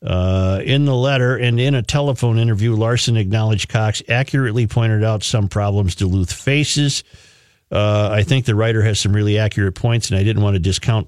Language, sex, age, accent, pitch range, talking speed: English, male, 50-69, American, 100-120 Hz, 190 wpm